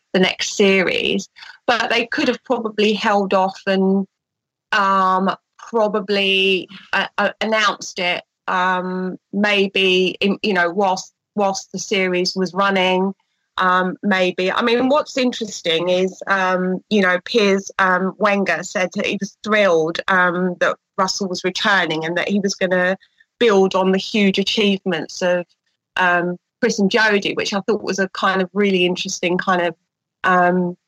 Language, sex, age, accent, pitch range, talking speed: English, female, 30-49, British, 185-210 Hz, 155 wpm